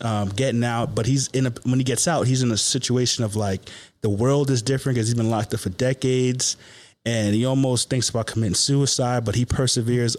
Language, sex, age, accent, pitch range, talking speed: English, male, 30-49, American, 110-130 Hz, 225 wpm